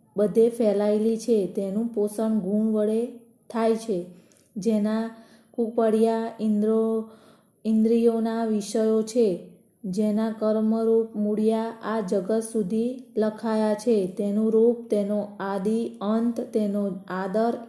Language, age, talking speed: Gujarati, 20-39, 80 wpm